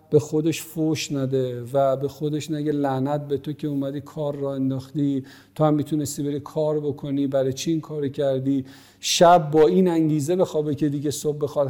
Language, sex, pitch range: Persian, male, 145-185 Hz